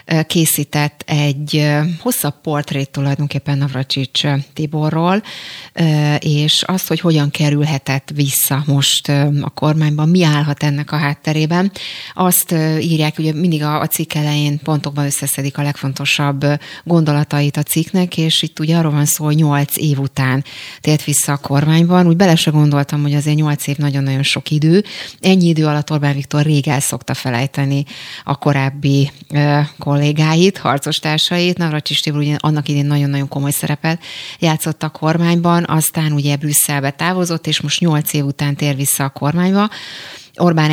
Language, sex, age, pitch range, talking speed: Hungarian, female, 30-49, 145-160 Hz, 145 wpm